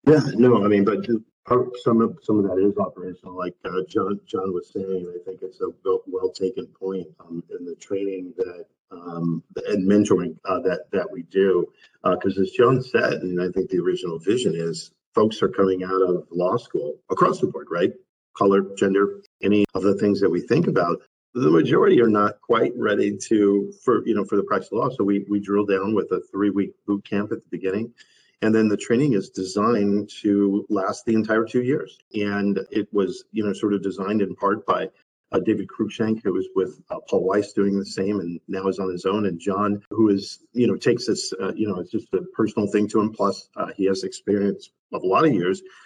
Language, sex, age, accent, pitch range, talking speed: English, male, 50-69, American, 95-110 Hz, 220 wpm